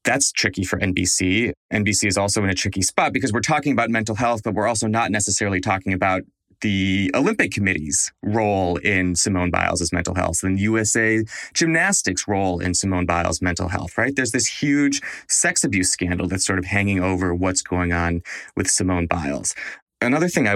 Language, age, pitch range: English, 30-49, 90-110 Hz